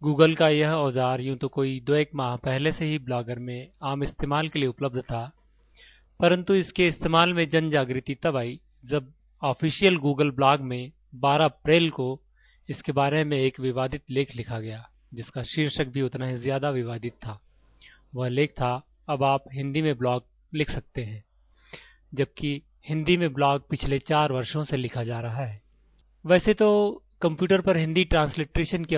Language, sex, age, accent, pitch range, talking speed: Hindi, male, 30-49, native, 130-155 Hz, 170 wpm